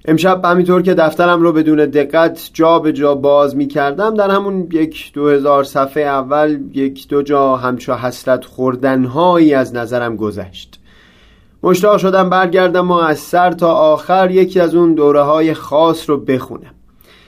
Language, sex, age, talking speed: Persian, male, 30-49, 155 wpm